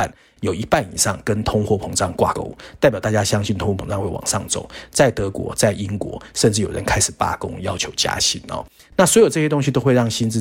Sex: male